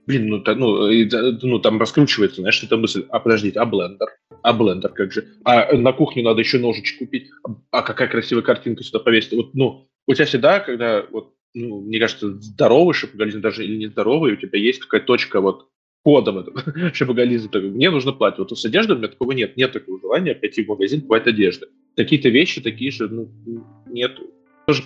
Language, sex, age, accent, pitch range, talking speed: Russian, male, 20-39, native, 110-130 Hz, 205 wpm